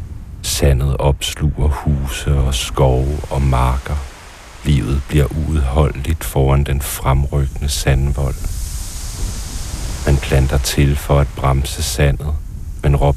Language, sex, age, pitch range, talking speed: Danish, male, 60-79, 70-80 Hz, 100 wpm